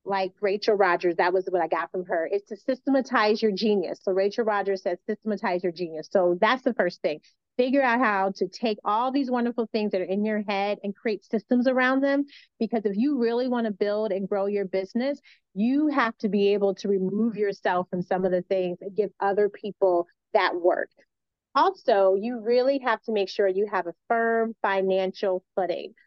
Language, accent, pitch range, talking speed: English, American, 195-235 Hz, 205 wpm